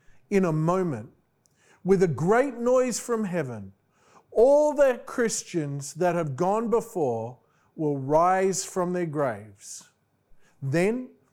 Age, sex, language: 50-69, male, English